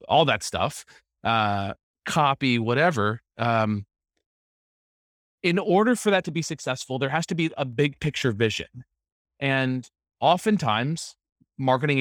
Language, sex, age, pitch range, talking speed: English, male, 30-49, 120-170 Hz, 125 wpm